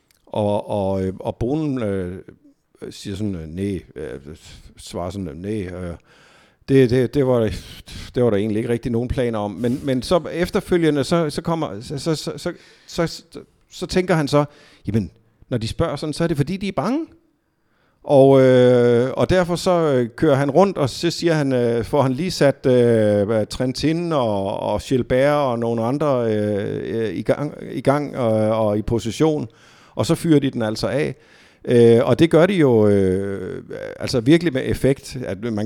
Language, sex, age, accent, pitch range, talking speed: Danish, male, 50-69, native, 110-145 Hz, 180 wpm